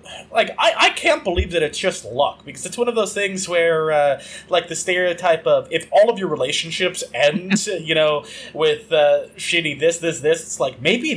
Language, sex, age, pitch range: English, male, 20-39, 155-210 Hz